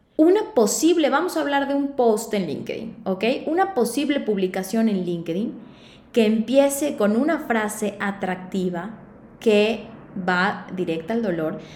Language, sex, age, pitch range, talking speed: Spanish, female, 20-39, 190-260 Hz, 140 wpm